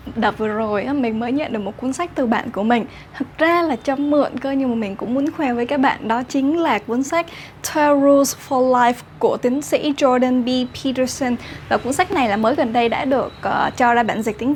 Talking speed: 245 wpm